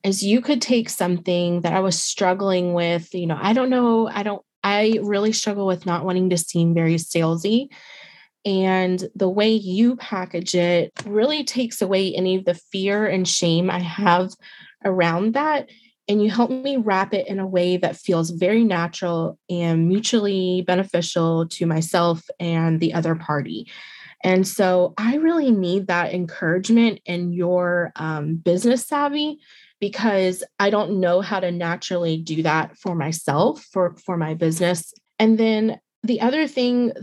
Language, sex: English, female